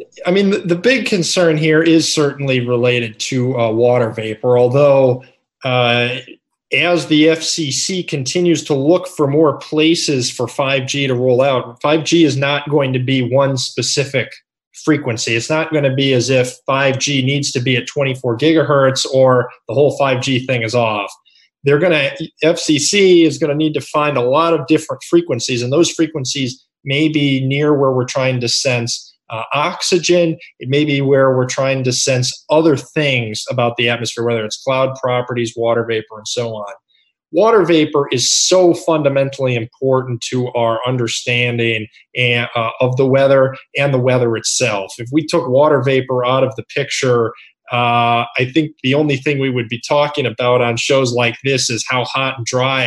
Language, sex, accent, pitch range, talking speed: English, male, American, 125-150 Hz, 175 wpm